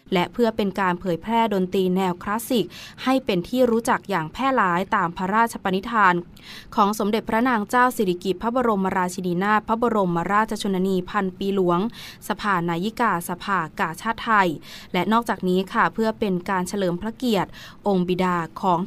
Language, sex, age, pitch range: Thai, female, 20-39, 185-230 Hz